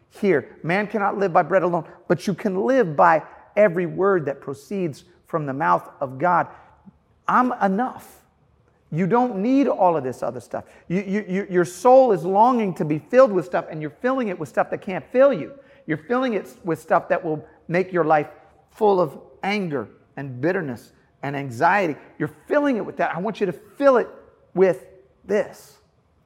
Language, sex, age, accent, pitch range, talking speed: English, male, 40-59, American, 130-200 Hz, 190 wpm